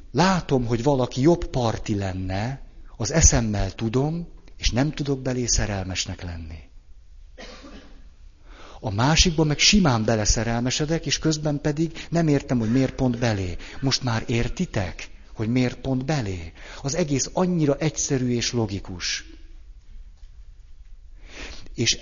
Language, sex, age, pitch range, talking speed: Hungarian, male, 60-79, 90-130 Hz, 115 wpm